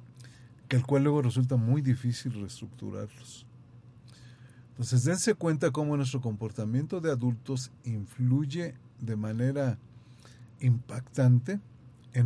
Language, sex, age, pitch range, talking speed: Spanish, male, 40-59, 120-135 Hz, 105 wpm